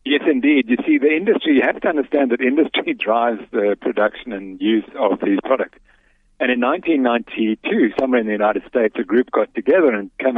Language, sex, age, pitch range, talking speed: English, male, 60-79, 105-125 Hz, 195 wpm